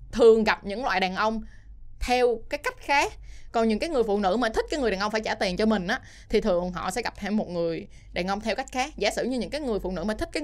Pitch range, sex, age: 185-240 Hz, female, 20-39